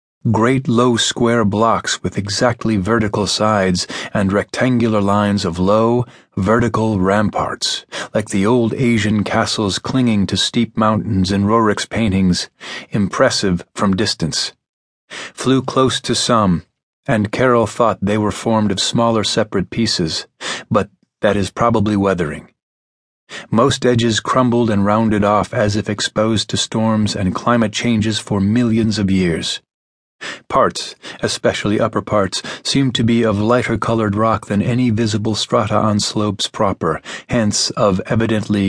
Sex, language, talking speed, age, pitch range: male, English, 135 wpm, 30-49, 100-120 Hz